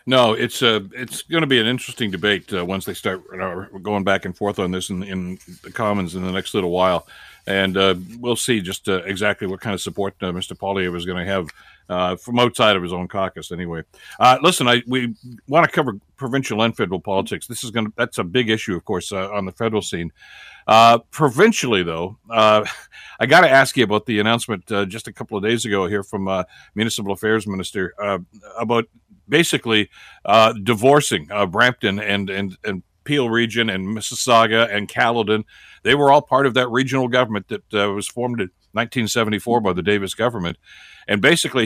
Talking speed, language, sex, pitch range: 205 wpm, English, male, 95-125 Hz